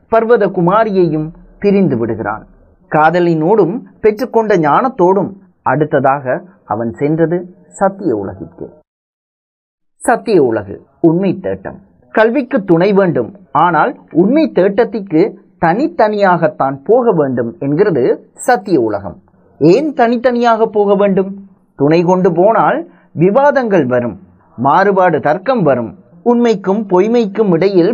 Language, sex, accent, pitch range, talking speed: Tamil, male, native, 160-225 Hz, 90 wpm